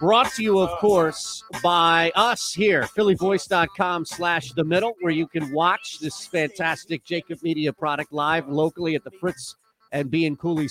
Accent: American